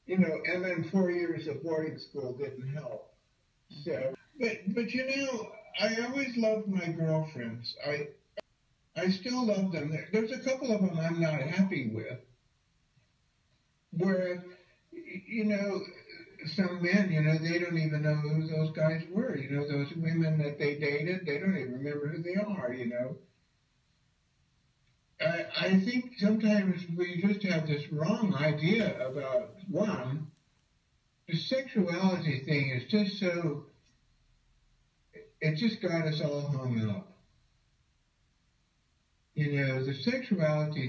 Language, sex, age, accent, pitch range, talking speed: English, male, 60-79, American, 145-190 Hz, 140 wpm